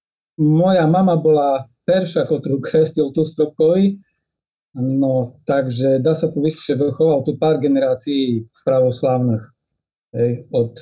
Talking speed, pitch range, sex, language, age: 115 wpm, 130-165 Hz, male, Slovak, 40-59